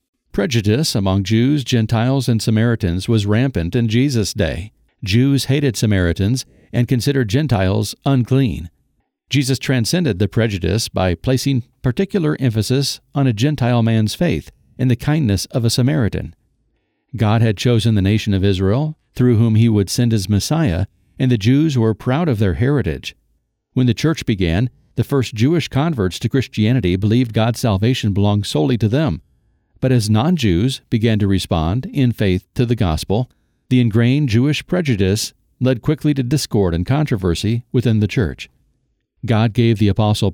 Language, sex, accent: English, male, American